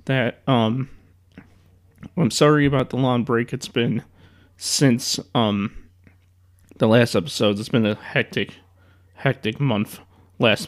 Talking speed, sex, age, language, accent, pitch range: 125 wpm, male, 30-49, English, American, 90-130 Hz